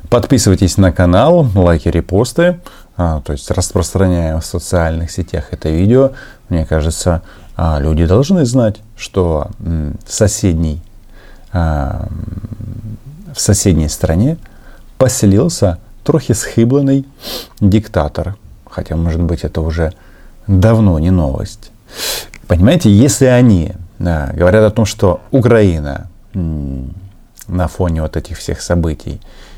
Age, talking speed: 30-49, 100 wpm